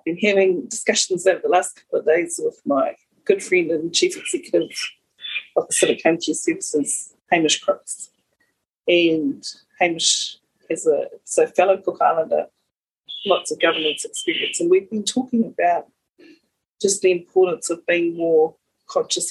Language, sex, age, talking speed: English, female, 30-49, 150 wpm